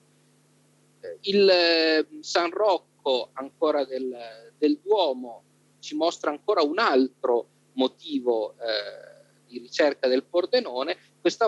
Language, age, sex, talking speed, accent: Italian, 40-59, male, 100 wpm, native